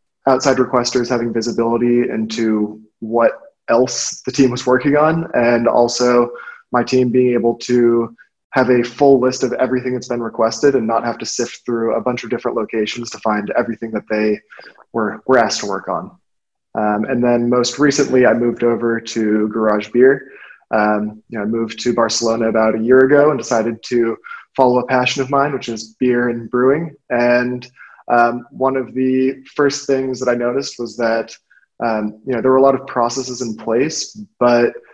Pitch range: 115-130 Hz